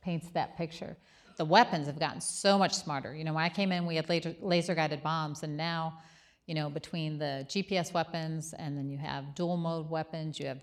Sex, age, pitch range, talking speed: female, 40-59, 155-180 Hz, 210 wpm